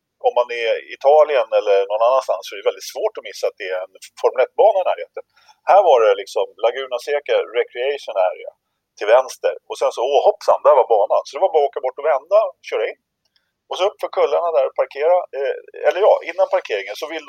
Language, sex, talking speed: Swedish, male, 230 wpm